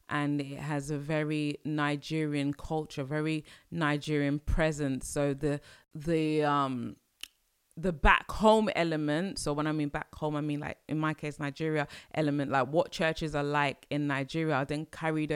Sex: female